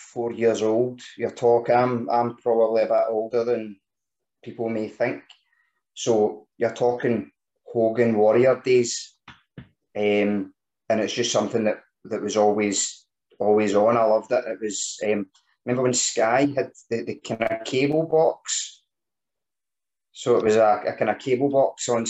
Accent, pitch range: British, 105-125 Hz